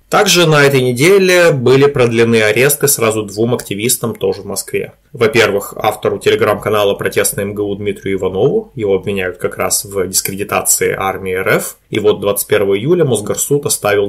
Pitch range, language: 105-170 Hz, Russian